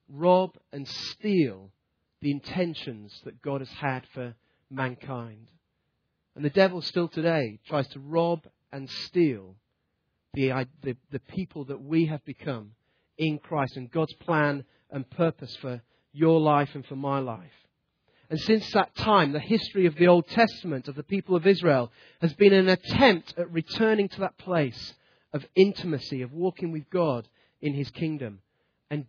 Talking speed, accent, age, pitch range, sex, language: 160 wpm, British, 40-59, 125-165 Hz, male, English